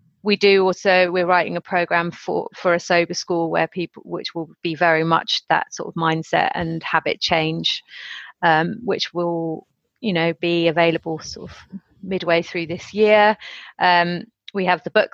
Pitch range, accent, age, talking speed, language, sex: 170-200 Hz, British, 30-49, 175 wpm, English, female